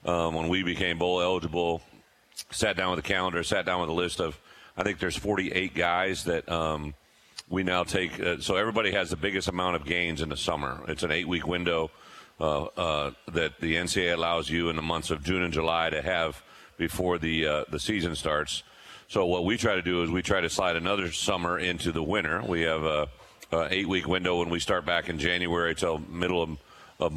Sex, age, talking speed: male, 40-59, 215 wpm